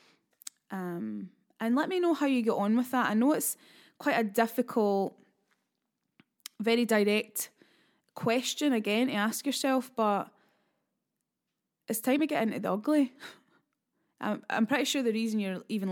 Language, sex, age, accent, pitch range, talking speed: English, female, 10-29, British, 205-245 Hz, 150 wpm